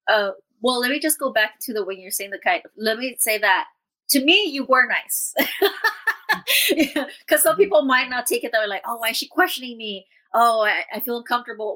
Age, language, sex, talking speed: 30-49, English, female, 235 wpm